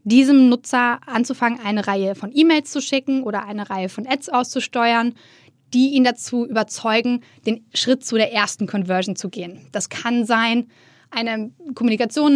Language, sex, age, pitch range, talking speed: German, female, 20-39, 220-255 Hz, 155 wpm